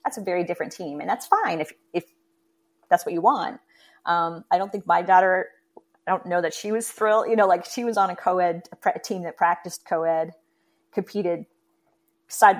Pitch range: 165-200 Hz